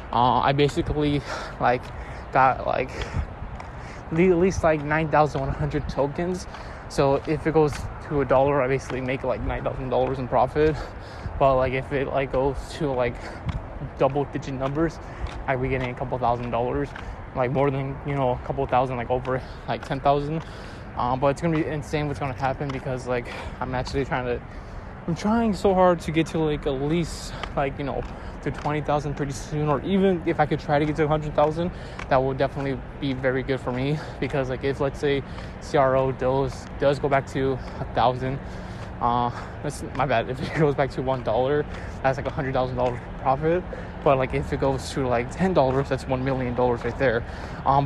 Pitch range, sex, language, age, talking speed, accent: 125-150 Hz, male, English, 20-39, 195 wpm, American